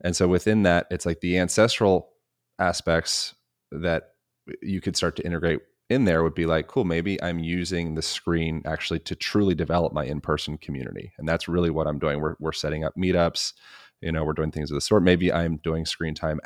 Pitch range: 80-90 Hz